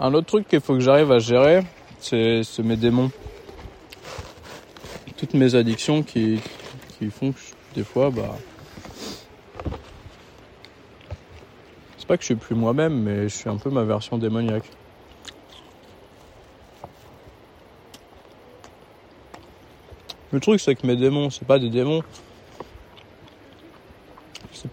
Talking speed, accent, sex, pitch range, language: 115 wpm, French, male, 110-135 Hz, French